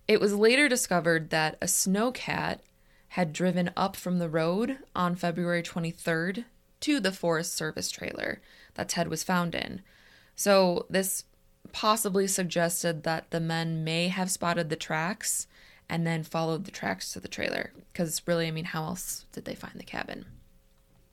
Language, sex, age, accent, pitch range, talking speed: English, female, 20-39, American, 165-205 Hz, 160 wpm